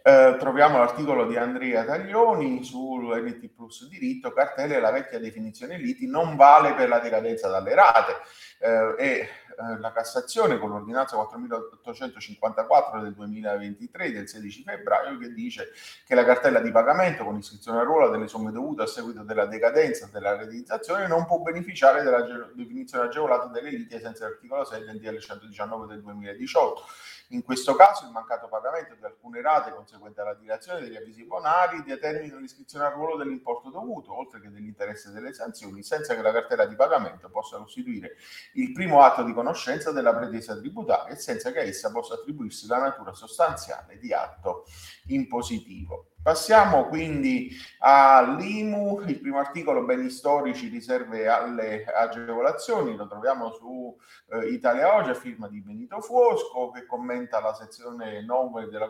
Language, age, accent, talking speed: Italian, 30-49, native, 160 wpm